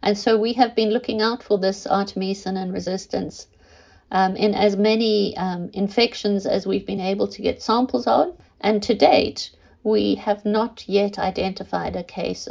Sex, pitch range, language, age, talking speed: female, 195-215 Hz, English, 50-69, 170 wpm